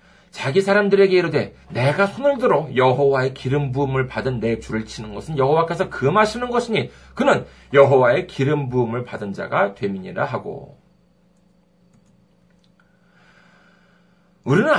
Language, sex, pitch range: Korean, male, 145-205 Hz